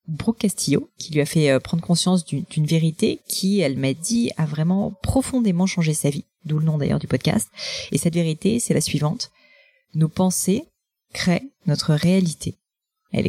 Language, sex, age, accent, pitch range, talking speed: French, female, 30-49, French, 145-190 Hz, 175 wpm